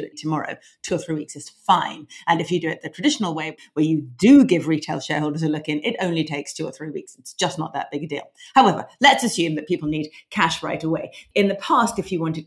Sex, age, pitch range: female, 40-59, 150-190 Hz